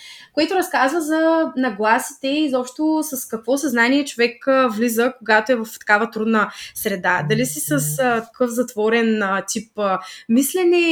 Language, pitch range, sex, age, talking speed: Bulgarian, 225-295 Hz, female, 20-39, 150 wpm